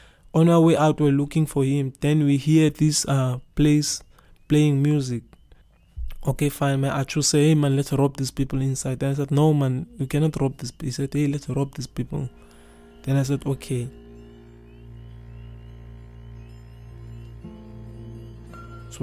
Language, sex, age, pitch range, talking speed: English, male, 20-39, 125-145 Hz, 160 wpm